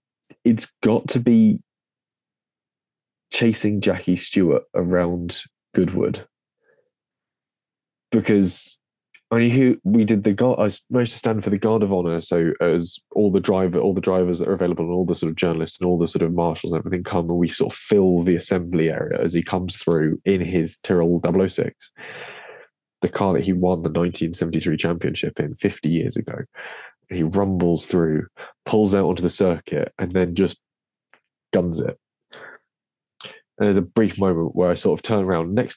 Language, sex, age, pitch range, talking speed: English, male, 20-39, 85-110 Hz, 175 wpm